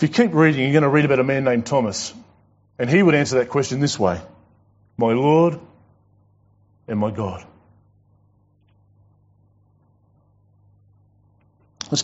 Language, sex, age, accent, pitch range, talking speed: English, male, 30-49, Australian, 100-125 Hz, 135 wpm